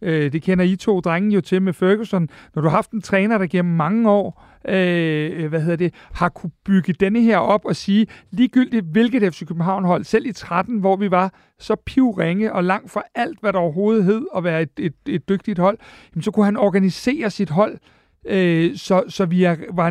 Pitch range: 170-205 Hz